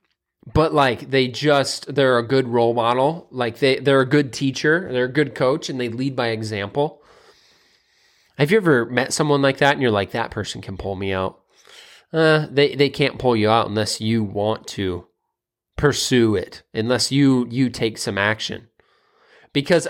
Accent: American